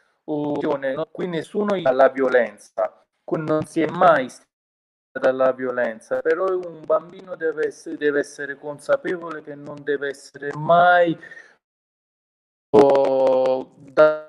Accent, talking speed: native, 120 wpm